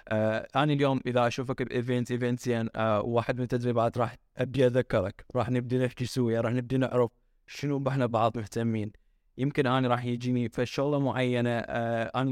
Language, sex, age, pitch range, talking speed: English, male, 20-39, 120-135 Hz, 145 wpm